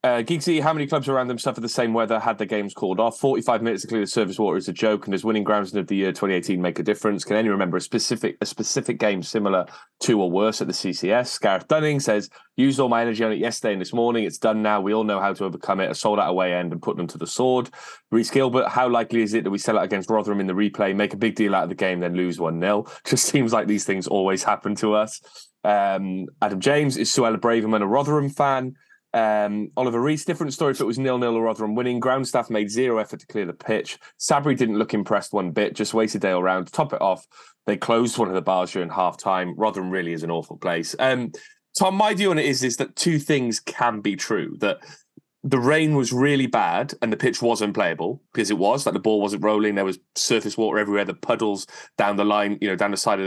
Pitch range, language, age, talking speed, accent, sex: 100-130 Hz, English, 20-39, 260 wpm, British, male